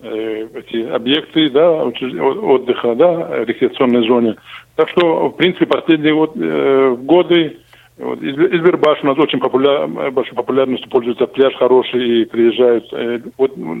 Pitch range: 125-165 Hz